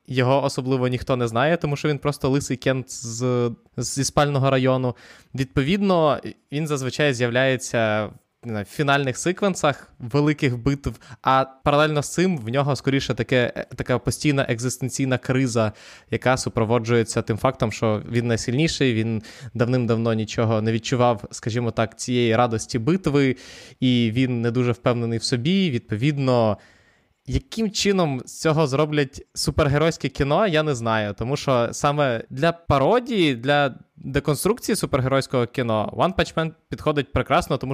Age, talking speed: 20-39, 135 wpm